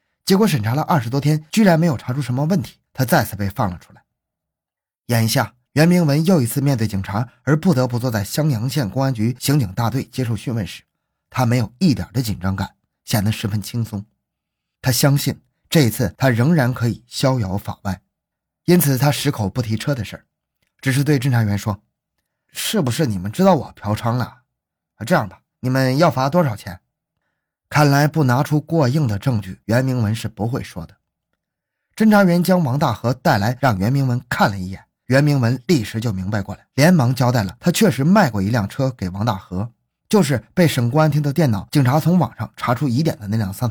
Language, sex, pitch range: Chinese, male, 110-150 Hz